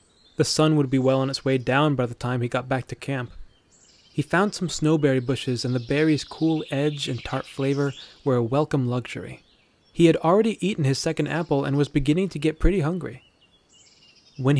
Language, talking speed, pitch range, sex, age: English, 200 wpm, 130-150 Hz, male, 20-39